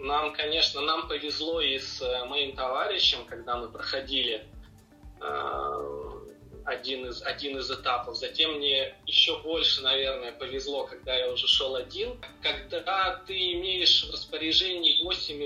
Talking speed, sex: 125 wpm, male